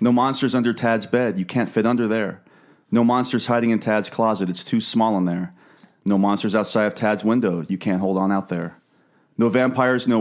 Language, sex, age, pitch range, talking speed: English, male, 30-49, 95-120 Hz, 210 wpm